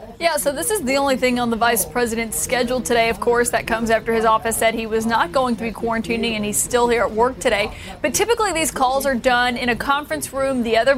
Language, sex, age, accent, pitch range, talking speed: English, female, 30-49, American, 230-265 Hz, 255 wpm